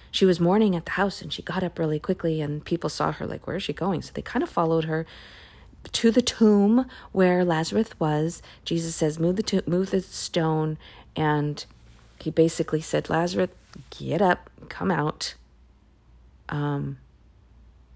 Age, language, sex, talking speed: 40-59, English, female, 170 wpm